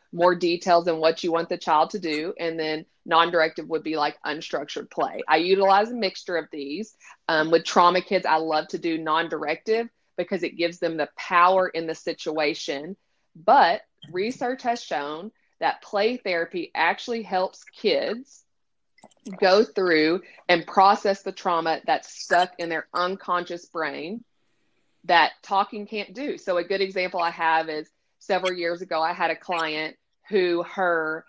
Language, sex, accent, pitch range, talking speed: English, female, American, 165-200 Hz, 160 wpm